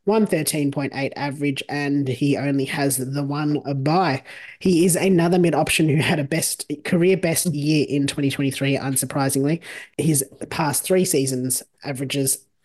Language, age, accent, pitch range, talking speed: English, 20-39, Australian, 135-165 Hz, 140 wpm